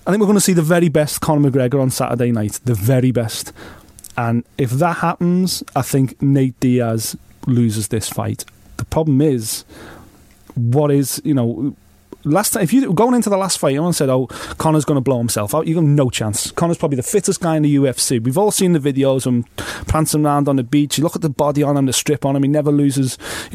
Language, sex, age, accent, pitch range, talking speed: English, male, 30-49, British, 135-170 Hz, 230 wpm